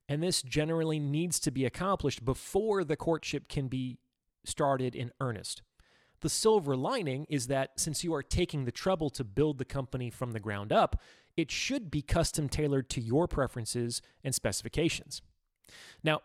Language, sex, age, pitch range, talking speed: English, male, 30-49, 120-155 Hz, 165 wpm